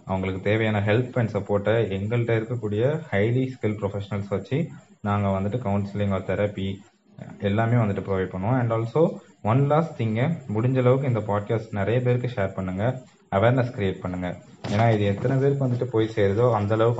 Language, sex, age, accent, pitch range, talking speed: Tamil, male, 20-39, native, 100-120 Hz, 155 wpm